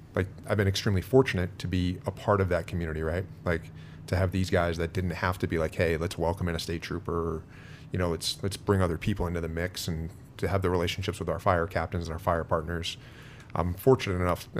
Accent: American